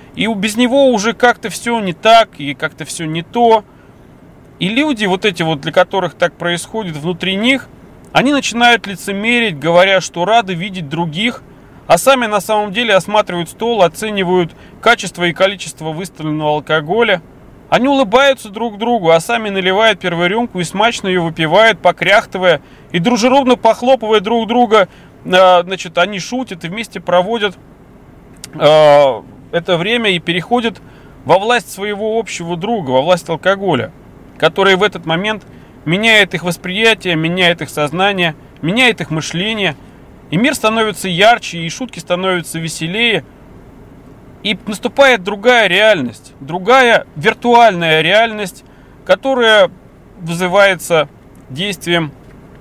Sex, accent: male, native